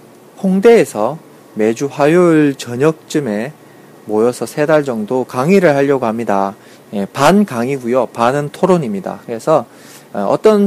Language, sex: Korean, male